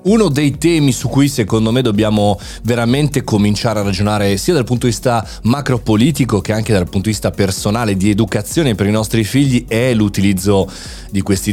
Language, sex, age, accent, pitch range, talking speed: Italian, male, 30-49, native, 100-135 Hz, 185 wpm